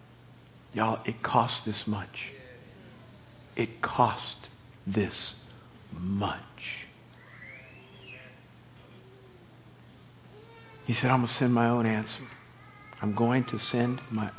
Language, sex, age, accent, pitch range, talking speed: English, male, 50-69, American, 110-125 Hz, 95 wpm